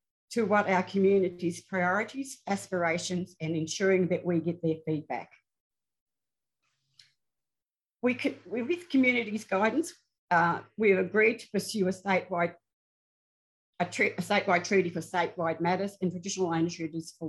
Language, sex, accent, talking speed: English, female, Australian, 135 wpm